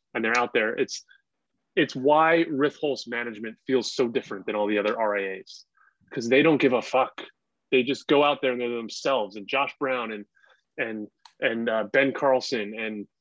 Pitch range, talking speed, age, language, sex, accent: 110-135 Hz, 185 wpm, 20-39, English, male, American